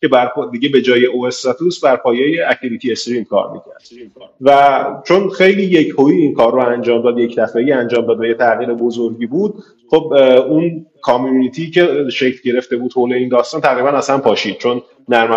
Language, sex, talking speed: Persian, male, 175 wpm